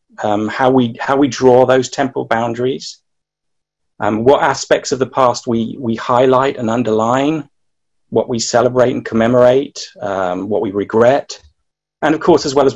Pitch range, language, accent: 110-140 Hz, English, British